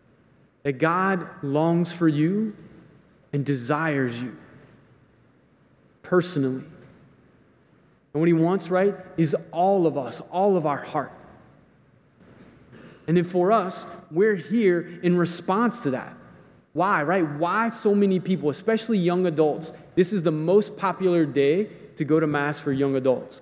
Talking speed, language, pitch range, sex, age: 140 wpm, English, 150-185 Hz, male, 20-39